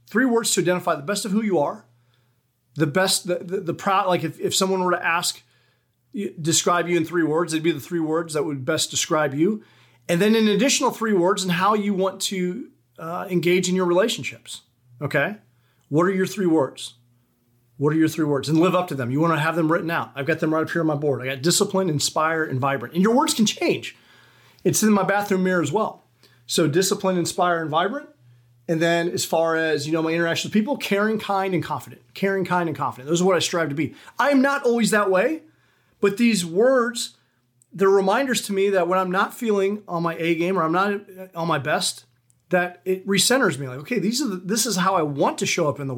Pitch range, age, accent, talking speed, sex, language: 150-195 Hz, 40-59, American, 235 wpm, male, English